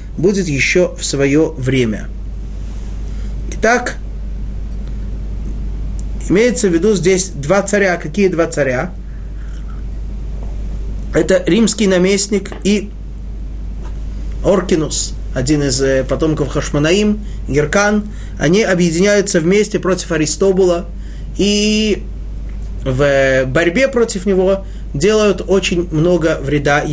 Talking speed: 85 wpm